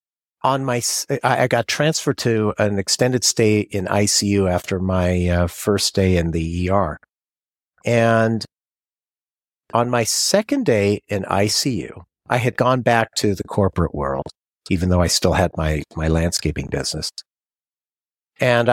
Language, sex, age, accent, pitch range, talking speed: English, male, 50-69, American, 95-140 Hz, 140 wpm